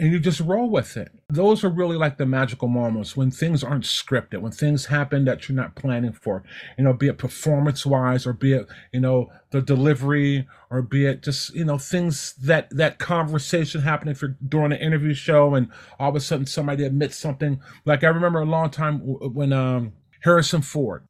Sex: male